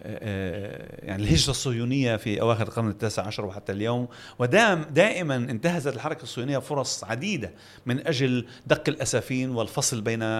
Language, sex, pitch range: Arabic, male, 115-155 Hz